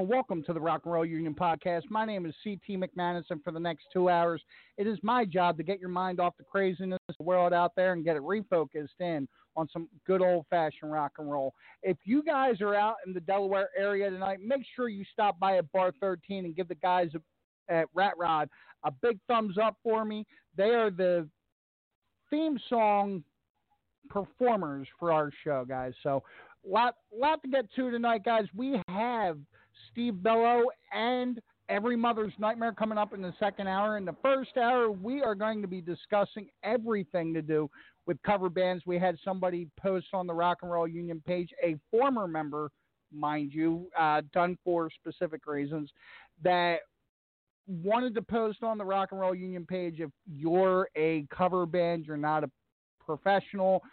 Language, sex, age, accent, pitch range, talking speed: English, male, 50-69, American, 165-210 Hz, 185 wpm